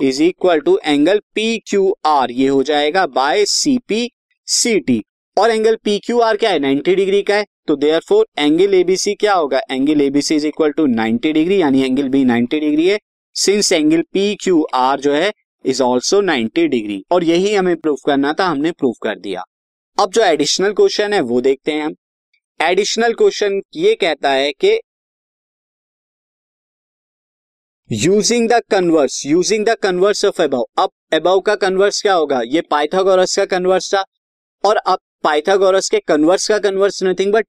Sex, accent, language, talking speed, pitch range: male, native, Hindi, 105 wpm, 150-210 Hz